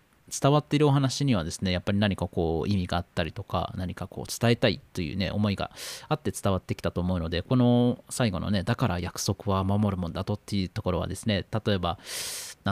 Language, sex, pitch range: Japanese, male, 90-110 Hz